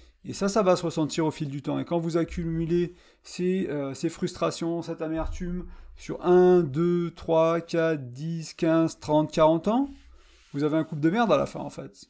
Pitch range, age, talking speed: 145-175 Hz, 30-49, 205 wpm